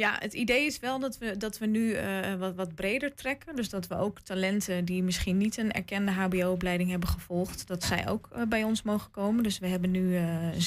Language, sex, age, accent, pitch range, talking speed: Dutch, female, 20-39, Dutch, 180-220 Hz, 230 wpm